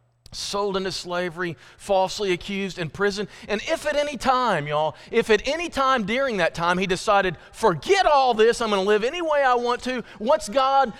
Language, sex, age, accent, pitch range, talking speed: English, male, 40-59, American, 155-230 Hz, 195 wpm